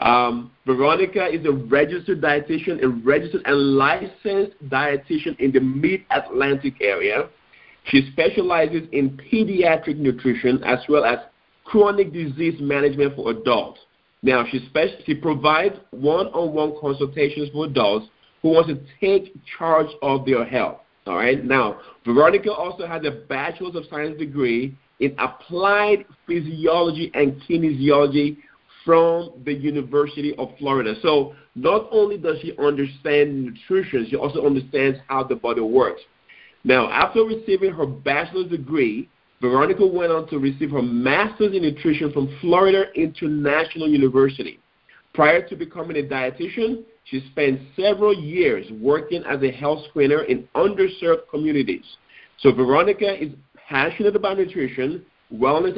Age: 50-69